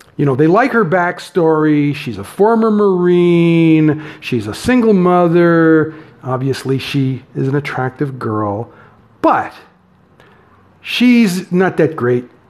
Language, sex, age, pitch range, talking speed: English, male, 50-69, 120-175 Hz, 120 wpm